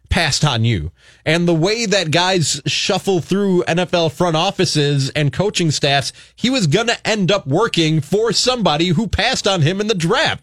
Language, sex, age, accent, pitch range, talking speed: English, male, 30-49, American, 145-200 Hz, 185 wpm